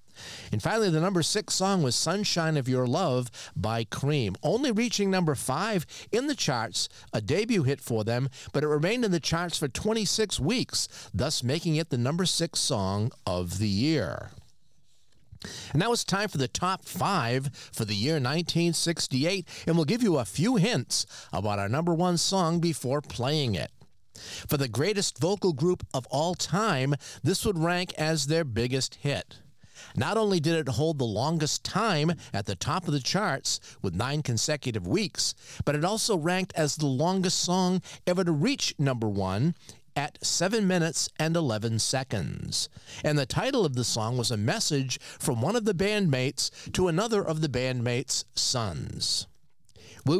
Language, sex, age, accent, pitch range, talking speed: English, male, 50-69, American, 120-170 Hz, 170 wpm